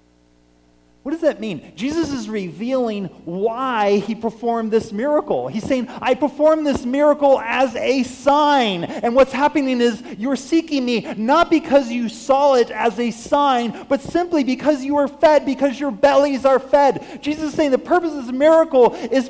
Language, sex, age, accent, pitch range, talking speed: English, male, 30-49, American, 205-275 Hz, 175 wpm